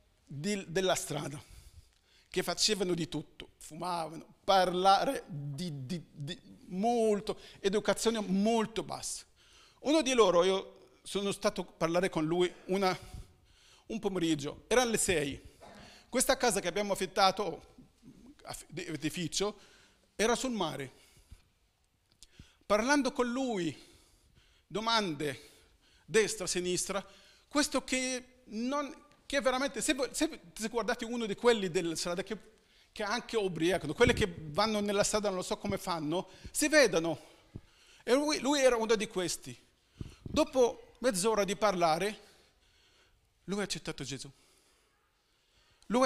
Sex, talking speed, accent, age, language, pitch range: male, 120 wpm, native, 40-59, Italian, 170-230 Hz